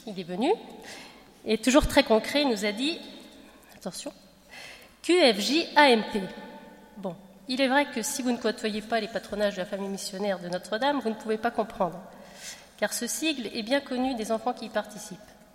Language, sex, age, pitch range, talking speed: French, female, 30-49, 210-260 Hz, 180 wpm